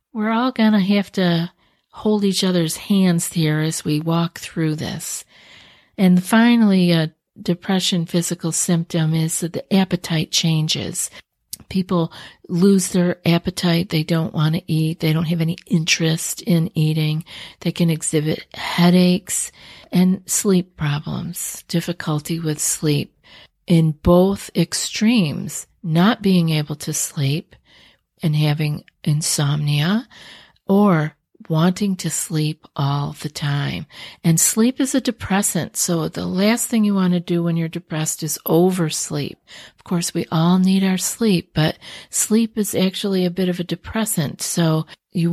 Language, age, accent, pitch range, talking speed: English, 50-69, American, 160-190 Hz, 140 wpm